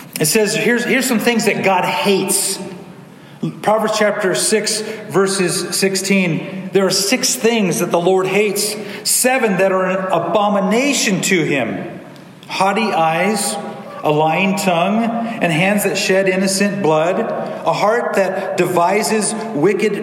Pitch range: 190-240 Hz